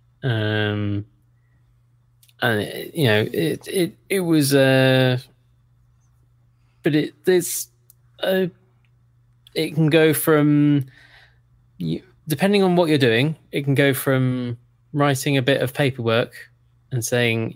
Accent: British